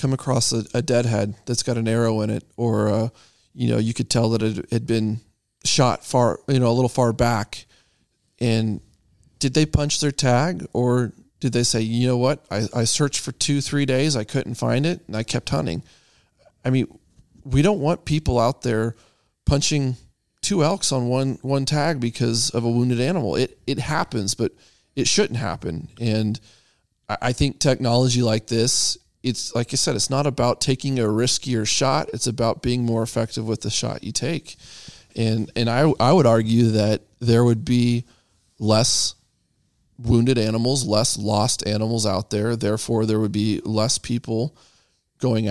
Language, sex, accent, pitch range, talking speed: English, male, American, 110-130 Hz, 180 wpm